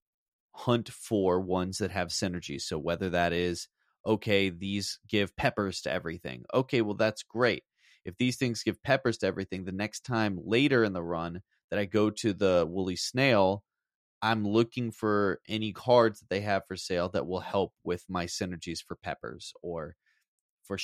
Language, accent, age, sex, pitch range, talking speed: English, American, 30-49, male, 95-120 Hz, 175 wpm